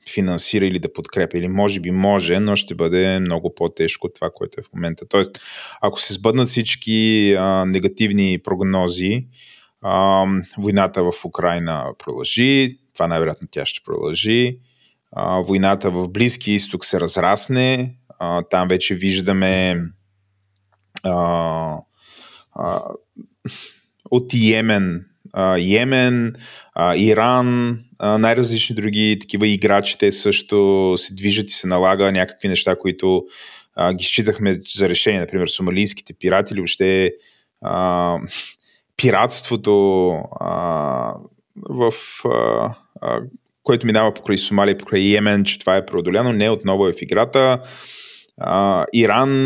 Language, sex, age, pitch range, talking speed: Bulgarian, male, 20-39, 95-115 Hz, 120 wpm